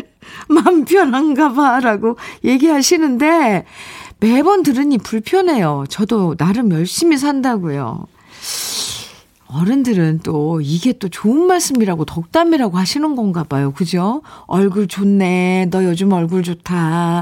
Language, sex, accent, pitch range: Korean, female, native, 200-320 Hz